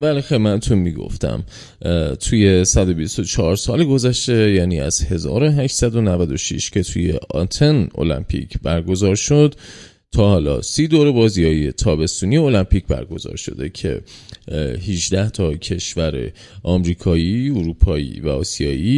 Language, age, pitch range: Persian, 30-49, 85-120 Hz